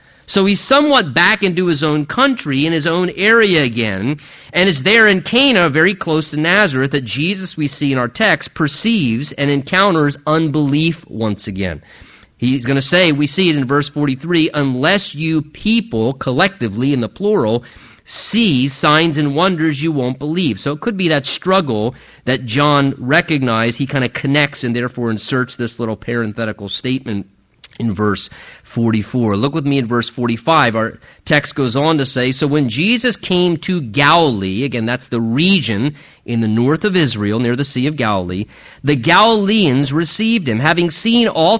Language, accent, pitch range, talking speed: English, American, 120-175 Hz, 175 wpm